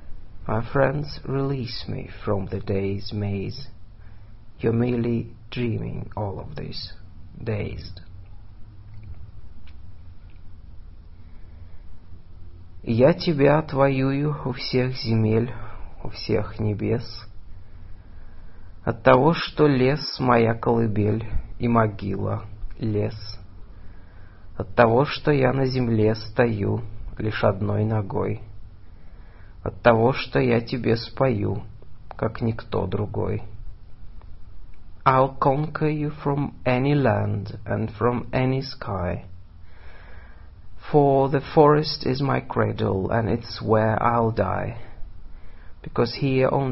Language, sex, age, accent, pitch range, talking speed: Russian, male, 40-59, native, 95-120 Hz, 100 wpm